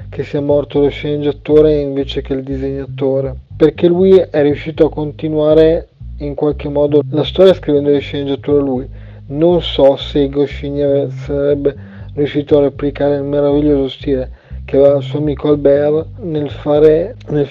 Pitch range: 135-155 Hz